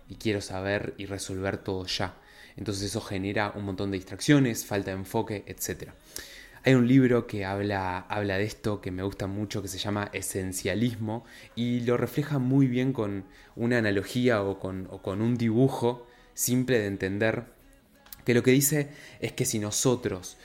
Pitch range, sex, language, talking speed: 100-125 Hz, male, Spanish, 170 wpm